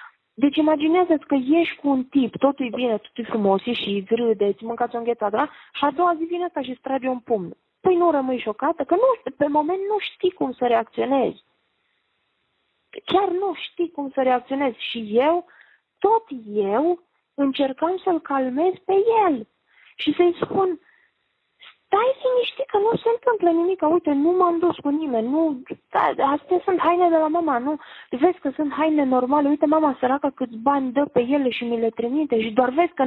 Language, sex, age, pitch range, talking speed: Romanian, female, 30-49, 255-355 Hz, 190 wpm